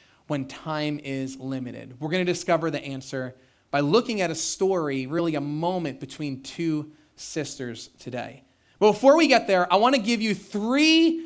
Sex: male